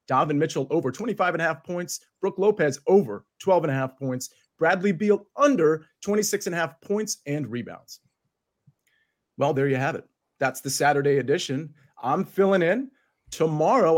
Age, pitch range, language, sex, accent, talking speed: 40-59, 145-205 Hz, English, male, American, 165 wpm